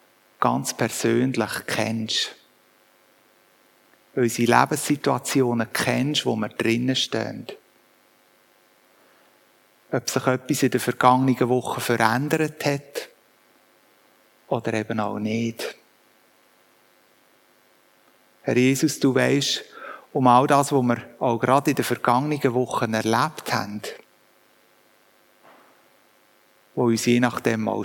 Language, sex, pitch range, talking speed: German, male, 115-135 Hz, 100 wpm